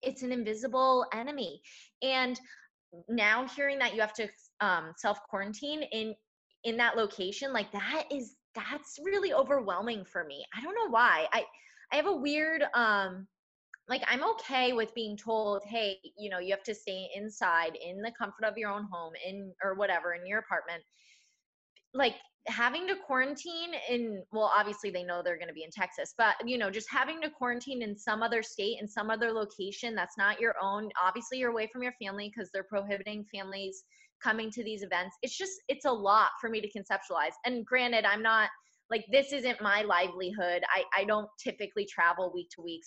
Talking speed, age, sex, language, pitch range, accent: 190 wpm, 20-39, female, English, 195-250 Hz, American